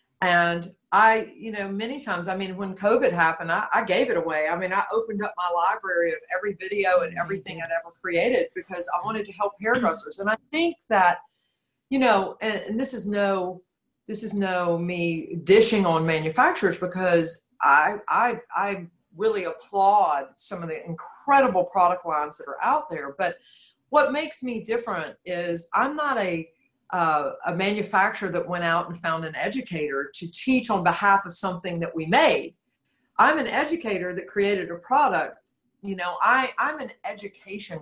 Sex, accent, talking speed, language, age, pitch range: female, American, 180 wpm, English, 50-69, 175-220 Hz